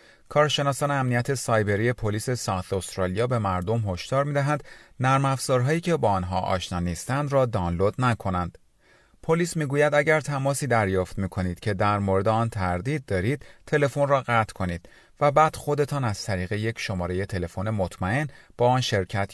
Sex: male